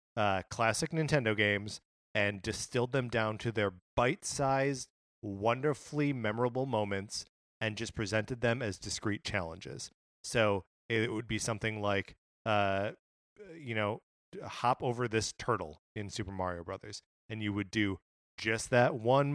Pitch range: 105-125 Hz